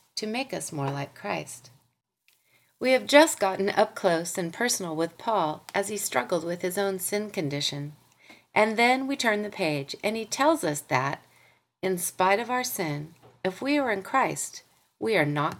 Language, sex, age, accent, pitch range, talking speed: English, female, 40-59, American, 160-235 Hz, 185 wpm